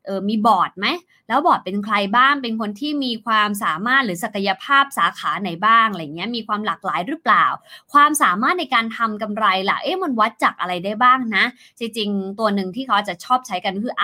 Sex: female